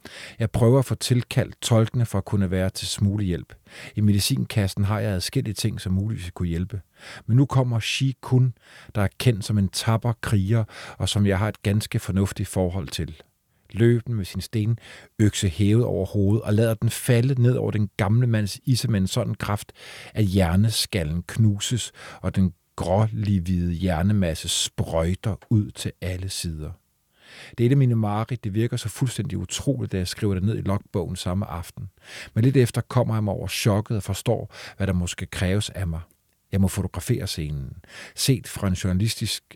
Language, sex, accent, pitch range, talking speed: Danish, male, native, 95-115 Hz, 180 wpm